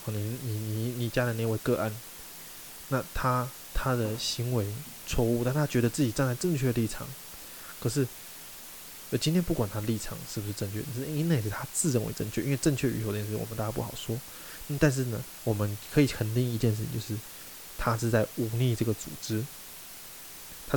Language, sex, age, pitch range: Chinese, male, 20-39, 110-135 Hz